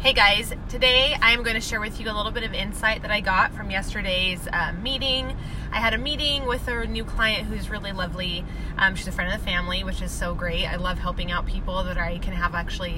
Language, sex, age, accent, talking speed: English, female, 20-39, American, 245 wpm